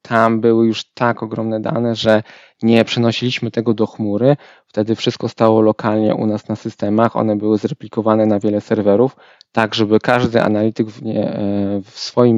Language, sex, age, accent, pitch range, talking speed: Polish, male, 20-39, native, 105-115 Hz, 160 wpm